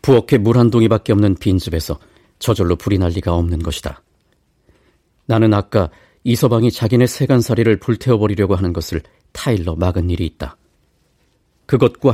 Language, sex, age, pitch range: Korean, male, 50-69, 85-115 Hz